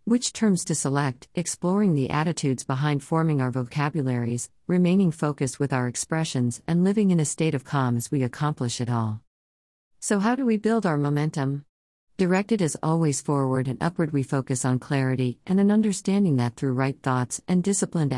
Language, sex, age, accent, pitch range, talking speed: English, female, 50-69, American, 130-170 Hz, 180 wpm